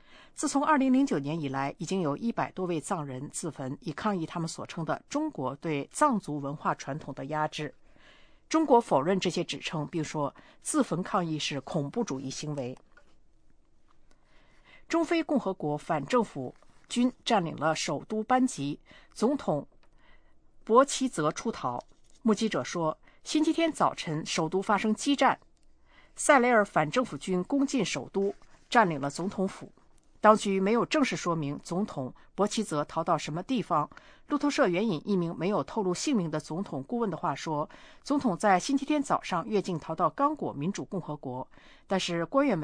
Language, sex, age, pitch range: English, female, 50-69, 155-235 Hz